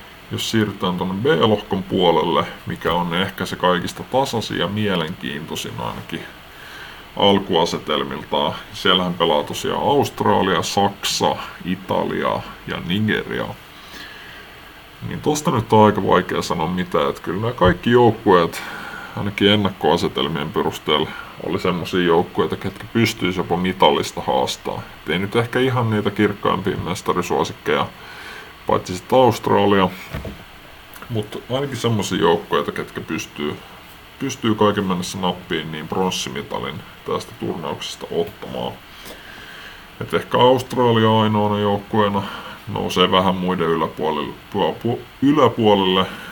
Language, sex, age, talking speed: Finnish, female, 30-49, 105 wpm